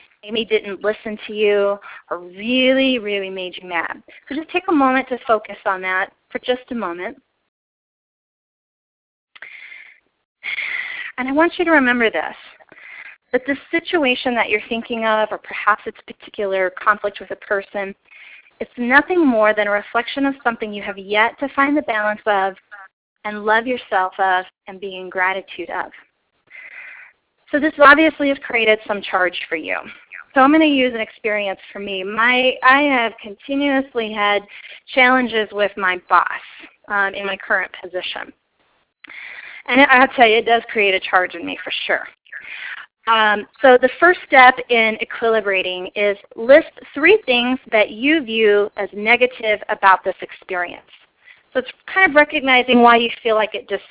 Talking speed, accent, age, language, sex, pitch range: 165 wpm, American, 30-49, English, female, 200-260 Hz